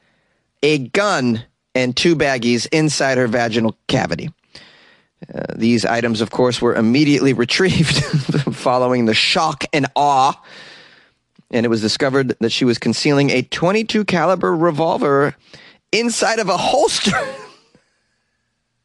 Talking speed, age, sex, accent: 120 wpm, 30-49, male, American